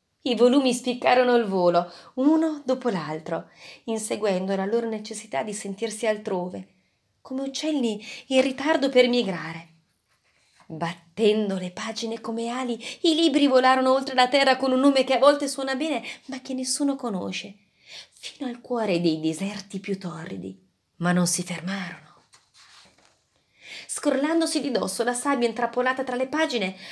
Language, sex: Italian, female